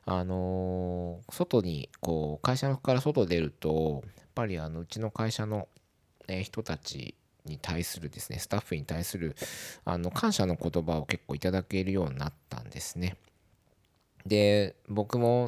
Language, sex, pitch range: Japanese, male, 80-105 Hz